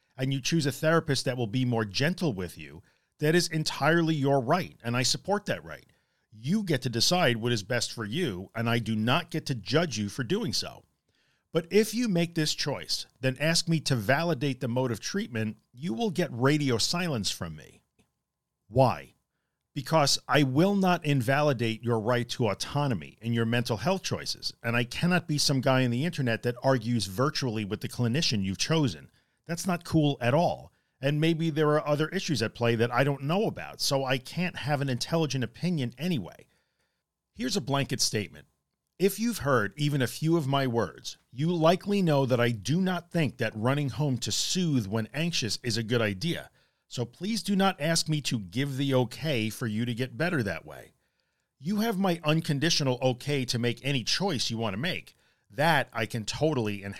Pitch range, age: 115-160 Hz, 50-69